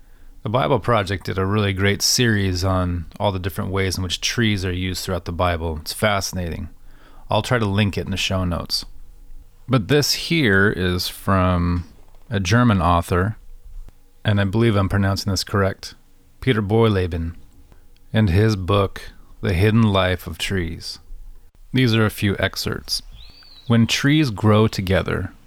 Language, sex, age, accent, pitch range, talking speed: English, male, 30-49, American, 95-115 Hz, 155 wpm